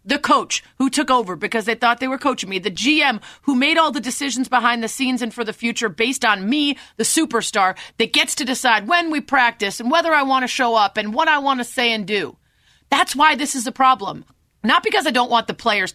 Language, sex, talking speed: English, female, 250 wpm